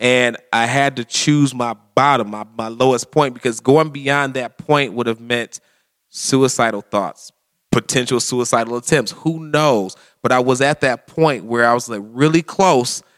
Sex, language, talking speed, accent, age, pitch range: male, English, 175 wpm, American, 30-49, 115-140 Hz